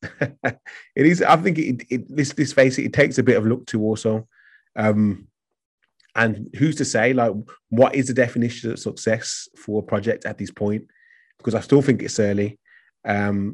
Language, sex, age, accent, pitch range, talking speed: English, male, 30-49, British, 110-125 Hz, 185 wpm